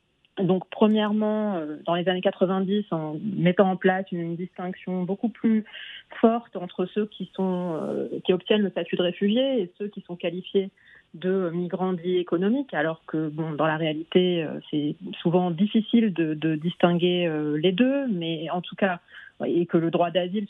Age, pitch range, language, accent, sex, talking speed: 30-49, 175-215 Hz, French, French, female, 165 wpm